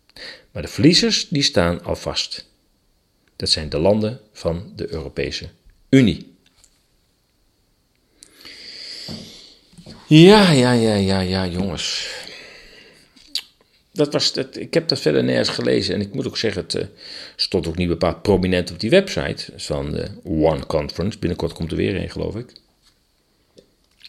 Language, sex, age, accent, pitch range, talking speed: Dutch, male, 40-59, Dutch, 90-110 Hz, 135 wpm